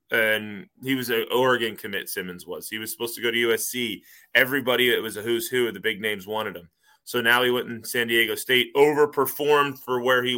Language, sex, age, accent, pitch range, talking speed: English, male, 20-39, American, 110-135 Hz, 220 wpm